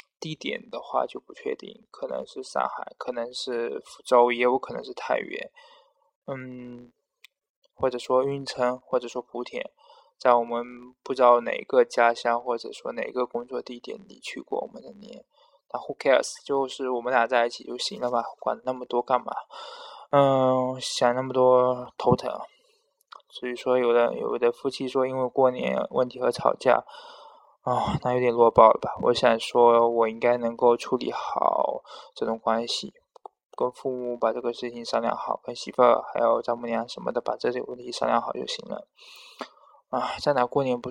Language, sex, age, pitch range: Chinese, male, 20-39, 120-140 Hz